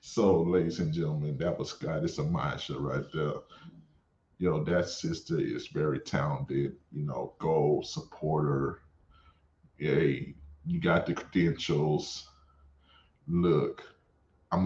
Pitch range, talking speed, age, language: 80-110 Hz, 120 wpm, 30-49, English